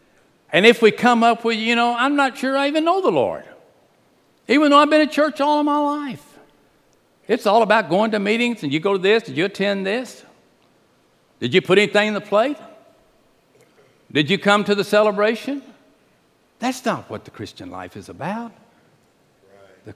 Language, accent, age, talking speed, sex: English, American, 60-79, 190 wpm, male